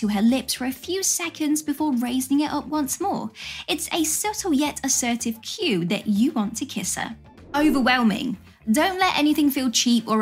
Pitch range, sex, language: 230-310 Hz, female, English